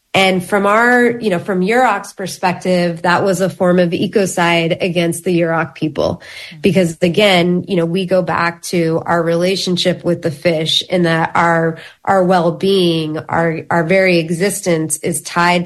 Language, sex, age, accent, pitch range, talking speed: English, female, 30-49, American, 170-190 Hz, 160 wpm